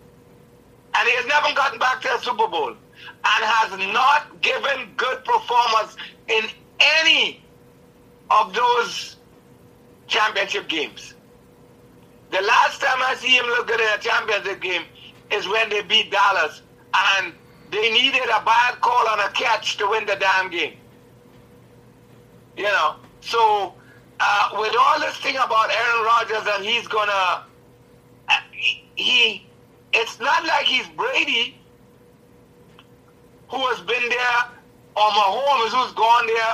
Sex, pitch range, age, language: male, 210-295 Hz, 60-79, English